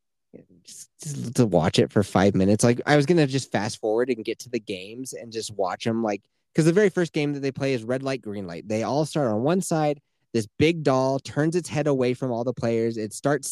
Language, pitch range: English, 115-155 Hz